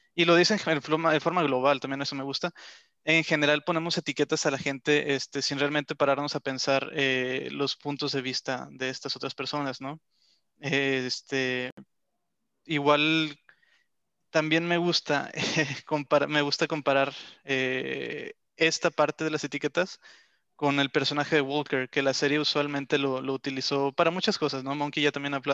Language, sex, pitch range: Spanish, male, 140-155 Hz